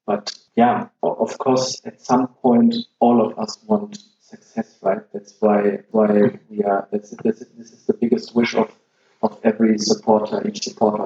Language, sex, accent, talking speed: English, male, German, 170 wpm